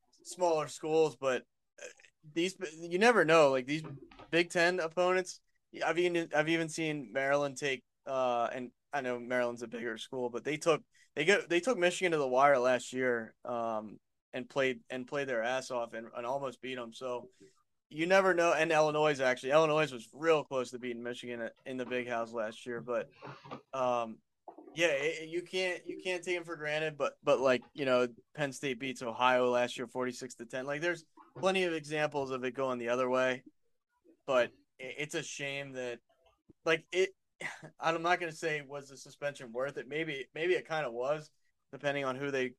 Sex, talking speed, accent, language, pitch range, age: male, 195 wpm, American, English, 125-160 Hz, 20-39